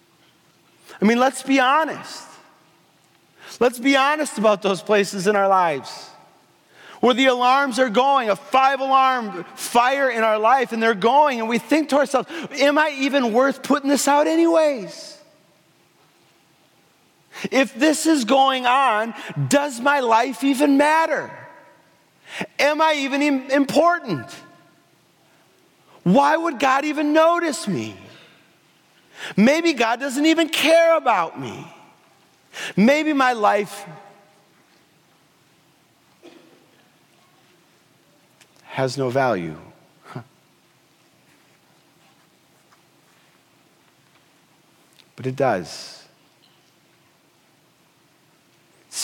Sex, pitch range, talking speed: male, 170-285 Hz, 100 wpm